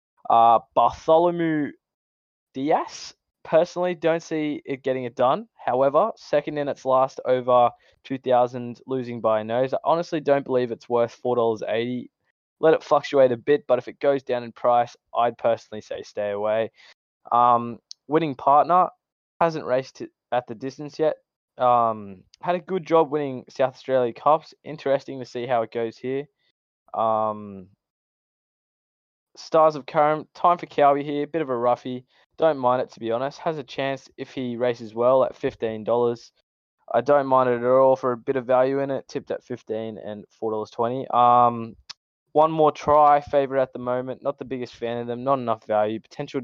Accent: Australian